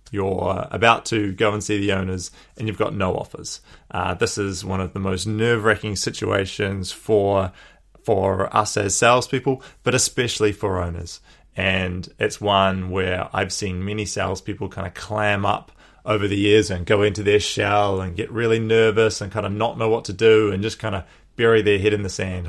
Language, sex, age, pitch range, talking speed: English, male, 20-39, 95-110 Hz, 195 wpm